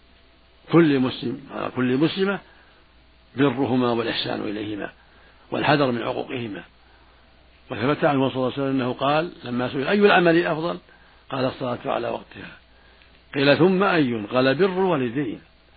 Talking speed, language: 135 wpm, Arabic